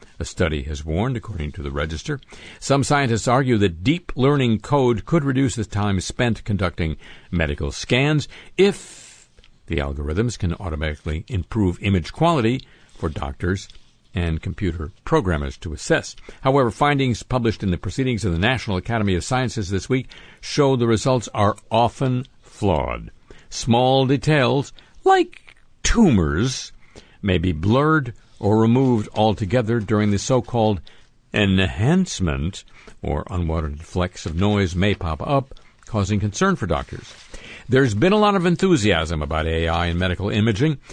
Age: 60-79